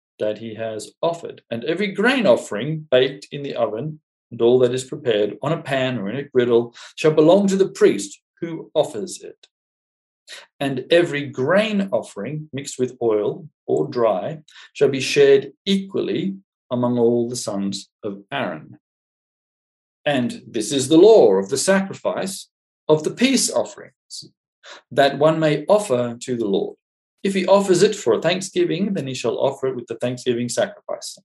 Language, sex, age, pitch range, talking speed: English, male, 50-69, 120-190 Hz, 165 wpm